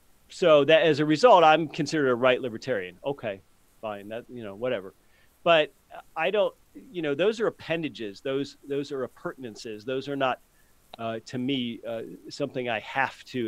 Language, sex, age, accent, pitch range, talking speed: English, male, 40-59, American, 115-150 Hz, 175 wpm